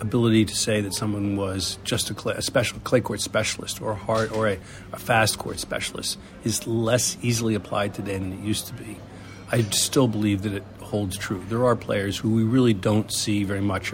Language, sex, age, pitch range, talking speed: English, male, 50-69, 100-115 Hz, 195 wpm